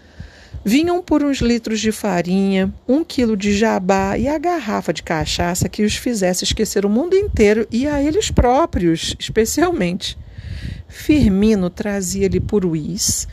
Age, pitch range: 50-69, 175-235 Hz